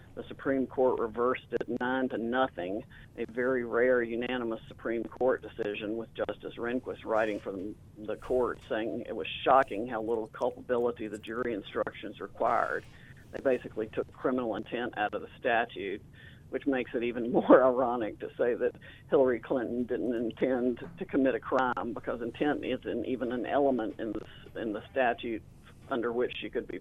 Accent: American